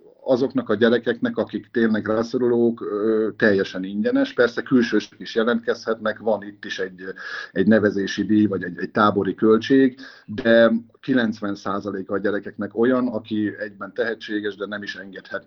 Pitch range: 105-125 Hz